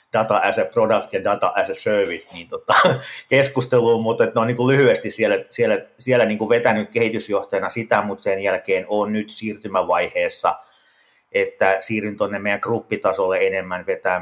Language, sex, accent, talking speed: English, male, Finnish, 165 wpm